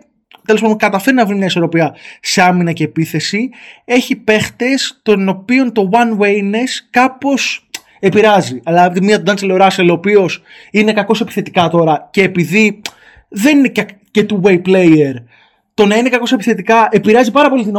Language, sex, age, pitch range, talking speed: Greek, male, 20-39, 170-240 Hz, 160 wpm